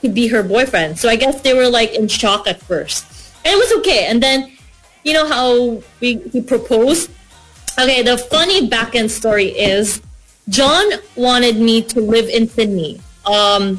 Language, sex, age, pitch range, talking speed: English, female, 20-39, 220-290 Hz, 180 wpm